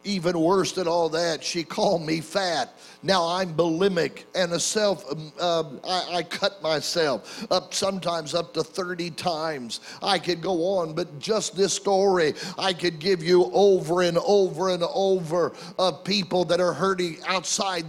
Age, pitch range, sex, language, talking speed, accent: 50-69, 185-230 Hz, male, English, 170 wpm, American